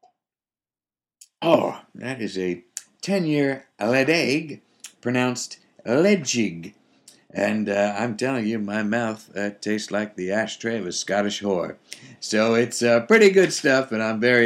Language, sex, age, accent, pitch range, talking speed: English, male, 60-79, American, 95-125 Hz, 140 wpm